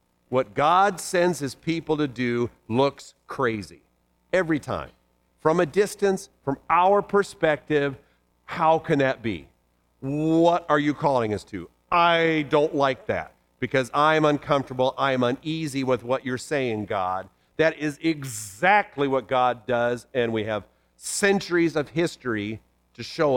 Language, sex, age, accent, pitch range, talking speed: English, male, 50-69, American, 115-160 Hz, 140 wpm